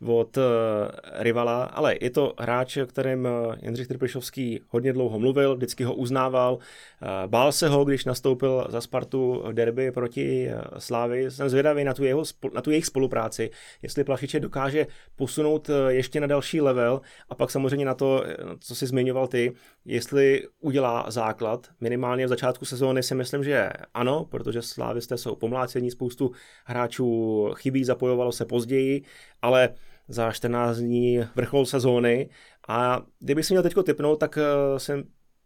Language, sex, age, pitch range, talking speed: Czech, male, 30-49, 120-135 Hz, 160 wpm